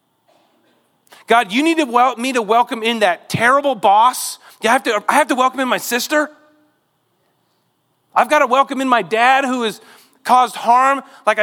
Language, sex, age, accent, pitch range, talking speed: English, male, 40-59, American, 165-260 Hz, 185 wpm